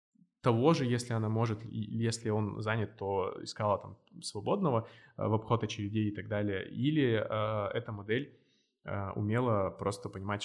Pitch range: 100-115 Hz